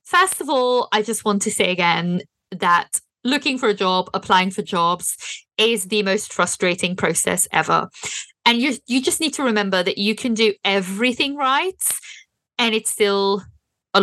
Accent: British